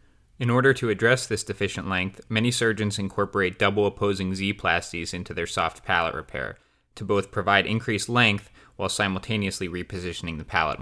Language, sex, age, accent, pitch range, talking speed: English, male, 20-39, American, 95-110 Hz, 150 wpm